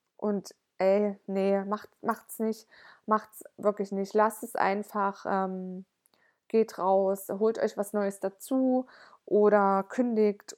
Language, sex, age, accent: German, female, 20-39, German